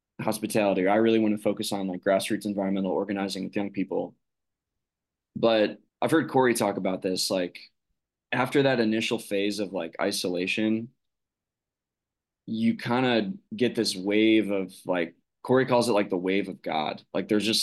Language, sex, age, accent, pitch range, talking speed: English, male, 20-39, American, 95-110 Hz, 165 wpm